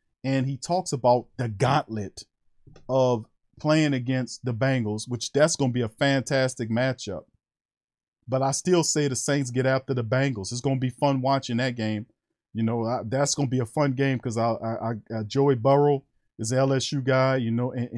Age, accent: 40-59, American